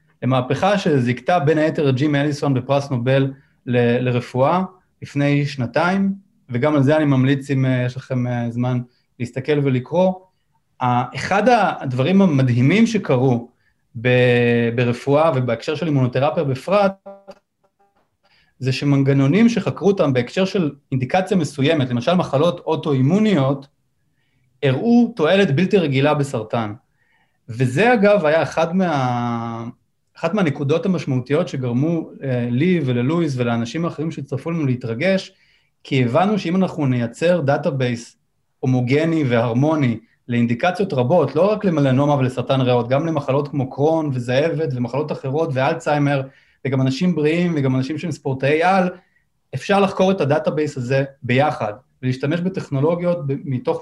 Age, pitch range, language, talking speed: 30-49, 130-170 Hz, Hebrew, 115 wpm